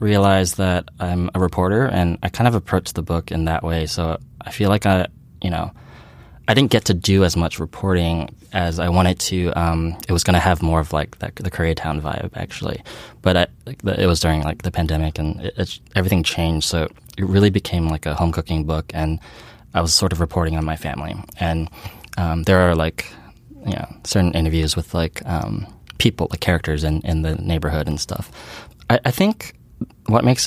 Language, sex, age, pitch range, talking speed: English, male, 20-39, 80-100 Hz, 210 wpm